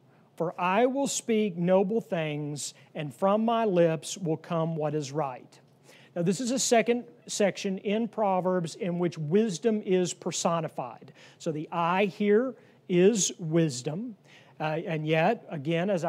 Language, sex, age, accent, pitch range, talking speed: English, male, 40-59, American, 160-195 Hz, 145 wpm